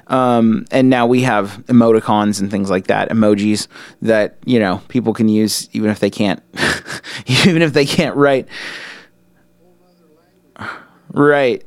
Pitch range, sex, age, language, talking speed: 115-135 Hz, male, 30-49, English, 140 wpm